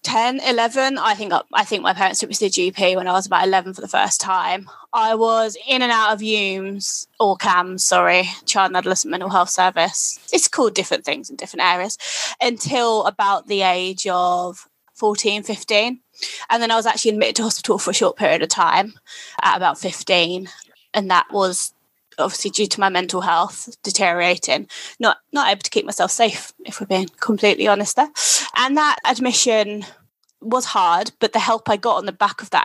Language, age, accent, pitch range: English, 20-39, British, 190-235 Hz